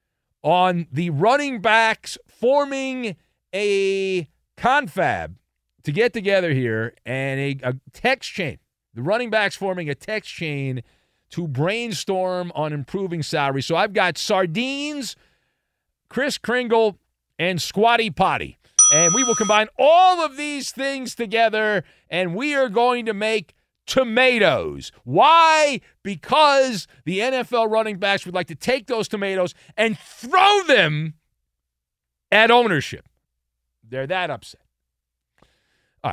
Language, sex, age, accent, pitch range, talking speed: English, male, 40-59, American, 145-235 Hz, 125 wpm